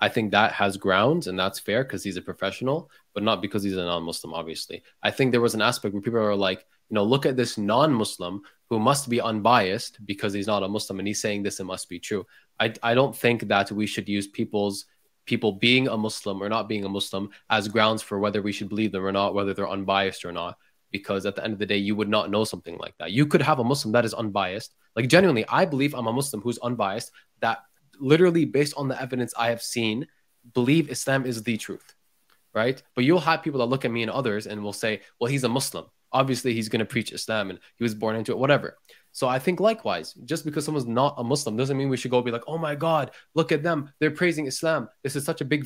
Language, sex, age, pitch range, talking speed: English, male, 20-39, 105-140 Hz, 250 wpm